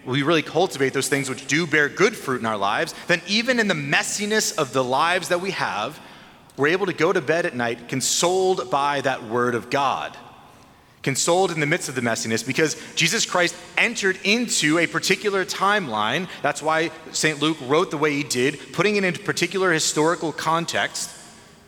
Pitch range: 125-165 Hz